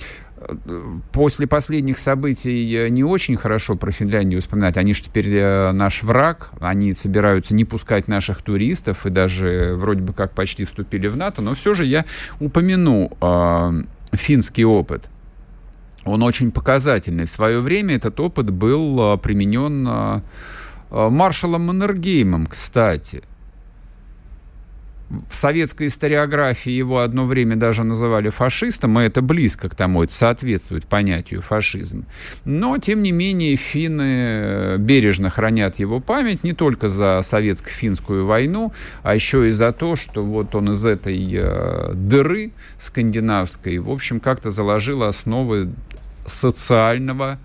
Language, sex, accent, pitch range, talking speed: Russian, male, native, 95-130 Hz, 130 wpm